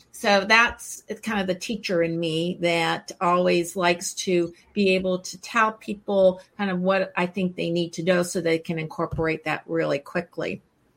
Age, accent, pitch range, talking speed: 50-69, American, 175-210 Hz, 180 wpm